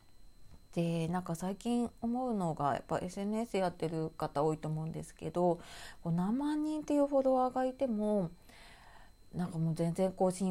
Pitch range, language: 160-215 Hz, Japanese